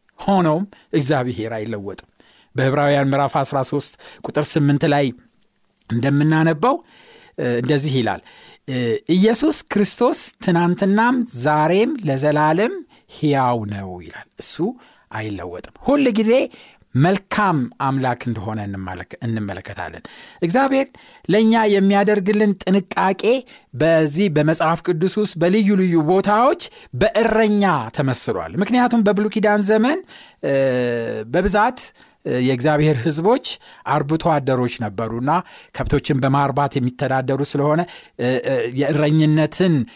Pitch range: 130-200 Hz